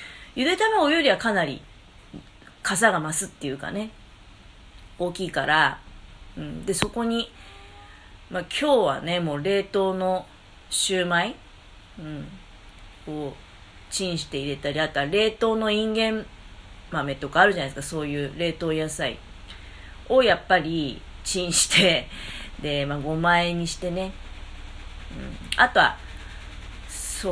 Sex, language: female, Japanese